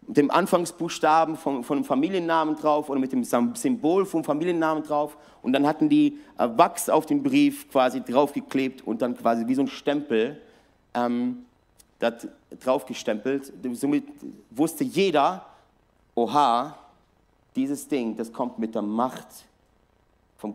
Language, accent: German, German